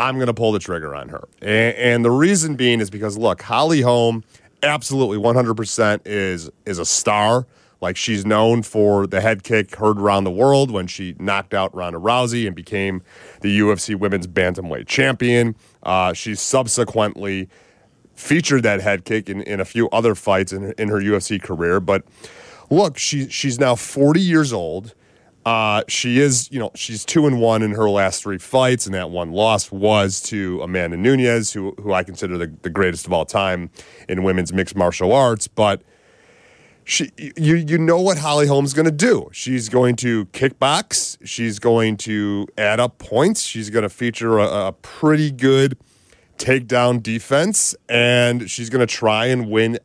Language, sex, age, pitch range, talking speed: English, male, 30-49, 100-125 Hz, 175 wpm